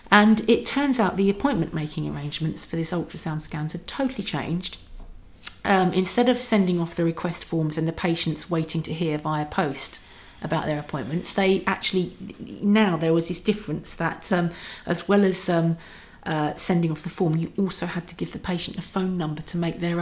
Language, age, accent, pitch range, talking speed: English, 40-59, British, 170-200 Hz, 195 wpm